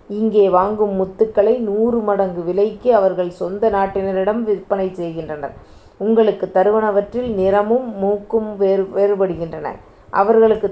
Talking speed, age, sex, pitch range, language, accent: 100 wpm, 30-49, female, 190-215 Hz, Tamil, native